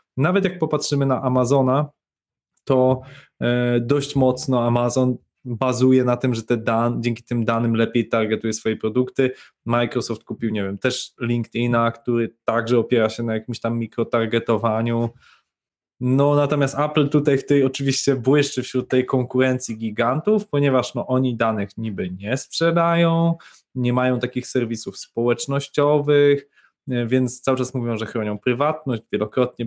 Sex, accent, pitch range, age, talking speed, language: male, native, 120-140 Hz, 20-39, 140 wpm, Polish